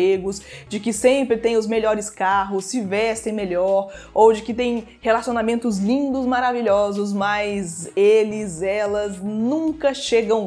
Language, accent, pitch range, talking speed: Portuguese, Brazilian, 200-250 Hz, 125 wpm